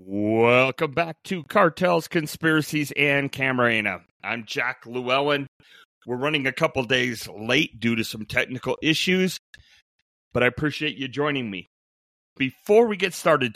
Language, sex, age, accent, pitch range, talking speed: English, male, 30-49, American, 115-145 Hz, 135 wpm